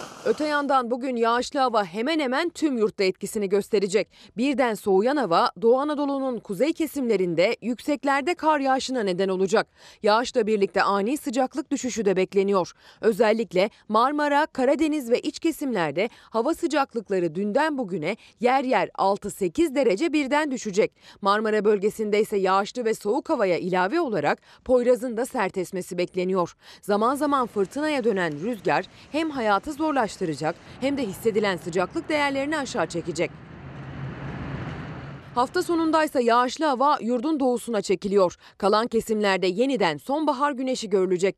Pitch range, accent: 195-280 Hz, native